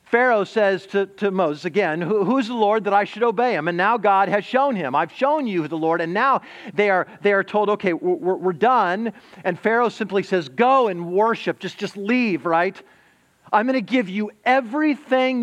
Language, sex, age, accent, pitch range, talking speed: English, male, 40-59, American, 150-220 Hz, 210 wpm